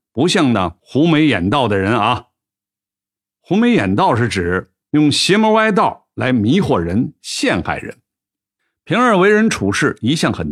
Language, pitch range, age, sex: Chinese, 100-155 Hz, 60-79, male